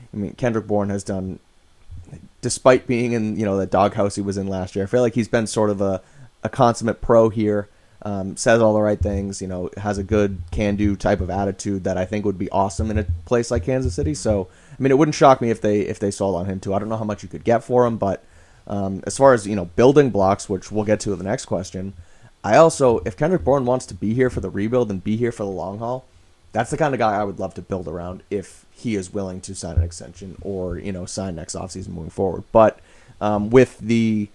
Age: 30-49